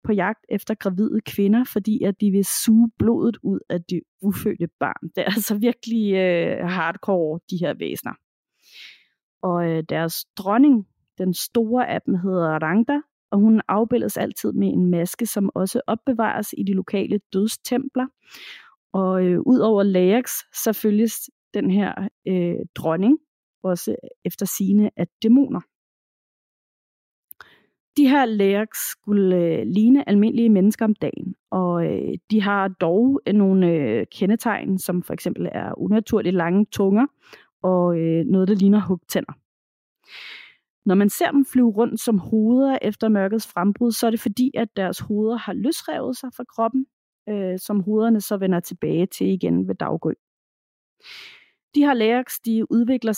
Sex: female